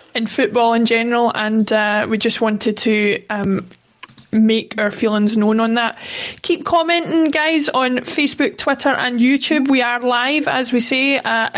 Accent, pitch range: British, 225-260 Hz